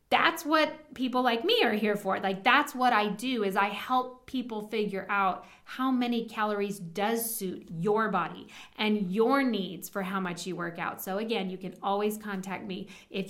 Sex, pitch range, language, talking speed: female, 190-255 Hz, English, 195 wpm